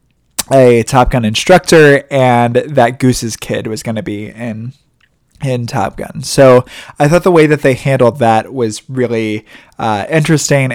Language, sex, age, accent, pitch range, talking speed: English, male, 20-39, American, 115-140 Hz, 160 wpm